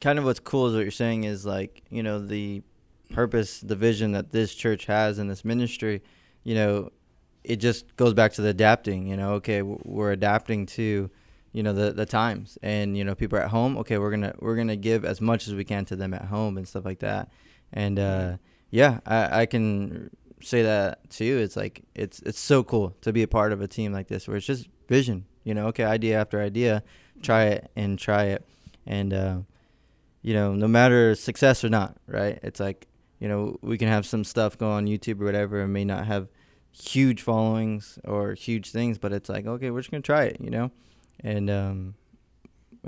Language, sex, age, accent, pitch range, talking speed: English, male, 20-39, American, 100-115 Hz, 215 wpm